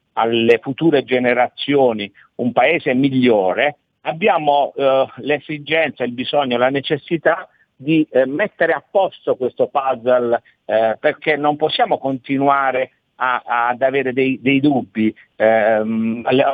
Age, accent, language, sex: 50-69, native, Italian, male